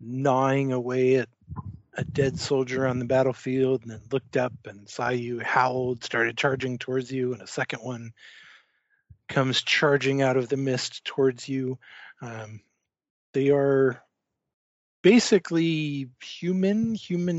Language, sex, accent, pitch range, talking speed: English, male, American, 120-140 Hz, 135 wpm